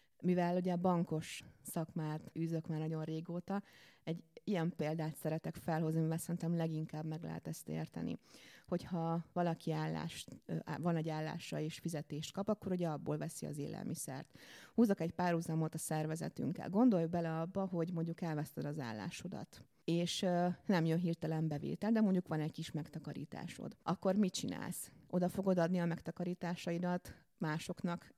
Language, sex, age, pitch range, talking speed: Hungarian, female, 30-49, 160-185 Hz, 150 wpm